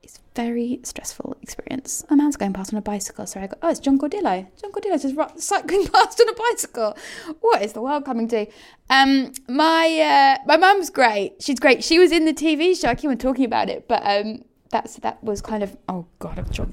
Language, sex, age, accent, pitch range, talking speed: English, female, 20-39, British, 220-295 Hz, 215 wpm